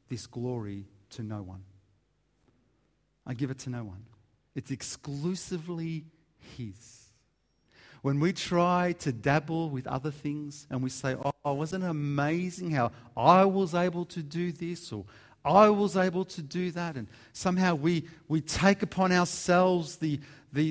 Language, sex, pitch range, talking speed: English, male, 125-165 Hz, 150 wpm